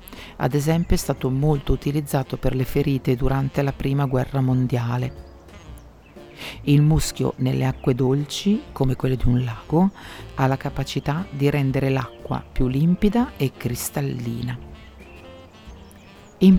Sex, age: female, 50-69